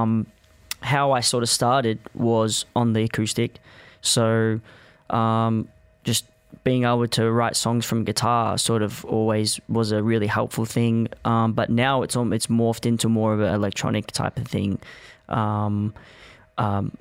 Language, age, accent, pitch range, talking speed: English, 20-39, Australian, 110-120 Hz, 160 wpm